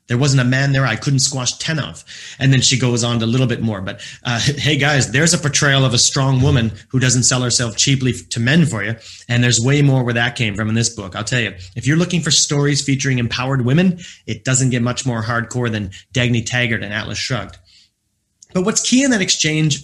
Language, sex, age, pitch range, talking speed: English, male, 30-49, 115-140 Hz, 240 wpm